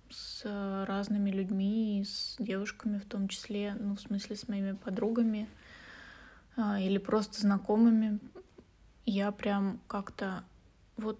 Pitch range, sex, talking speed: 200-225 Hz, female, 115 wpm